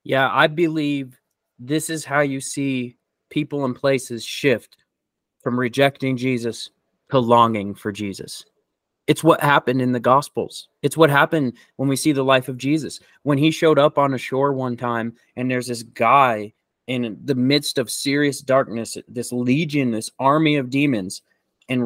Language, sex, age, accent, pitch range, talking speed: English, male, 20-39, American, 125-155 Hz, 165 wpm